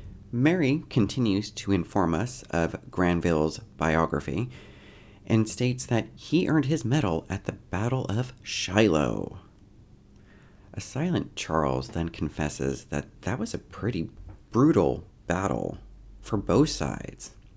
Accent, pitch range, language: American, 85-120 Hz, English